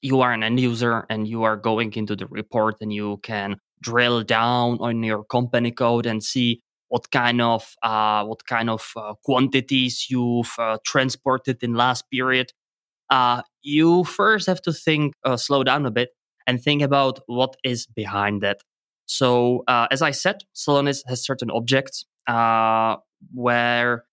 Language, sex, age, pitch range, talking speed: English, male, 20-39, 115-130 Hz, 165 wpm